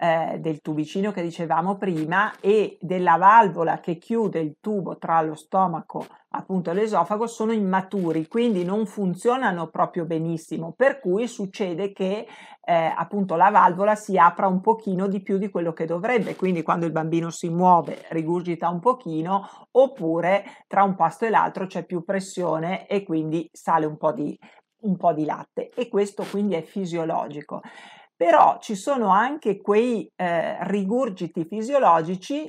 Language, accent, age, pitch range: Italian, native, 50-69, 170-215 Hz